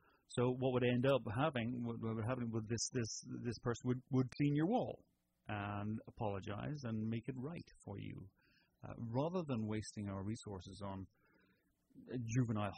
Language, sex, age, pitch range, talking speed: English, male, 30-49, 100-130 Hz, 150 wpm